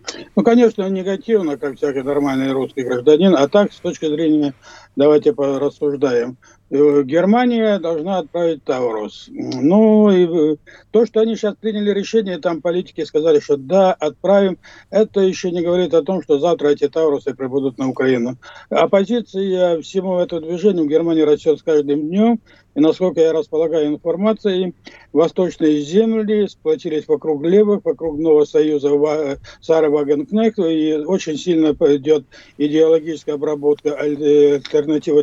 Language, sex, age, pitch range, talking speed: Russian, male, 60-79, 150-205 Hz, 130 wpm